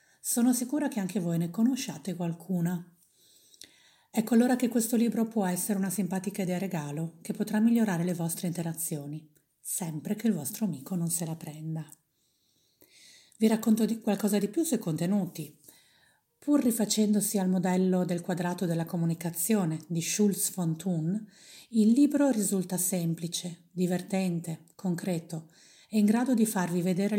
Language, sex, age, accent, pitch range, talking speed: Italian, female, 40-59, native, 170-215 Hz, 145 wpm